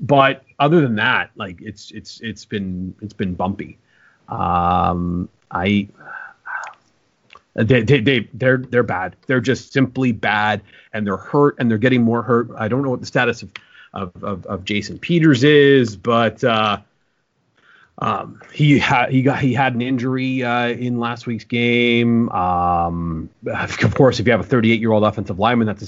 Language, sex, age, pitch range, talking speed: English, male, 30-49, 105-135 Hz, 175 wpm